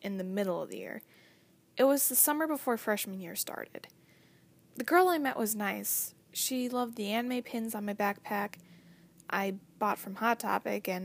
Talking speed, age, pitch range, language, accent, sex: 185 wpm, 10-29, 190-240 Hz, English, American, female